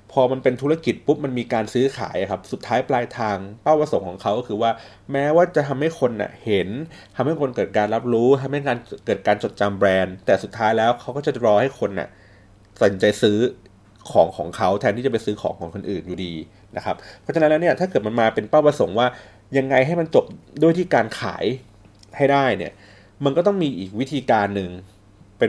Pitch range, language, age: 100-130 Hz, Thai, 30-49